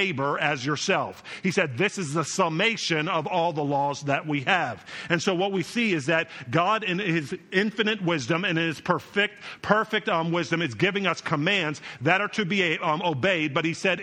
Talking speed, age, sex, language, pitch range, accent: 195 wpm, 50-69, male, English, 160-190 Hz, American